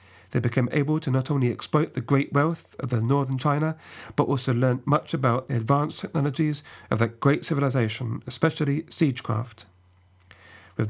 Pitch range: 110-150 Hz